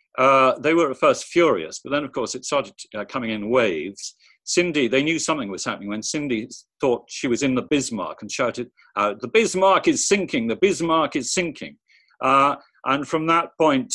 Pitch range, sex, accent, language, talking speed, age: 120-160 Hz, male, British, English, 200 wpm, 50-69